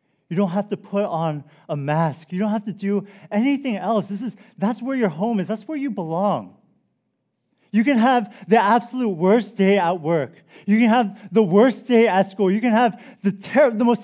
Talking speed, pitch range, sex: 215 wpm, 170-215 Hz, male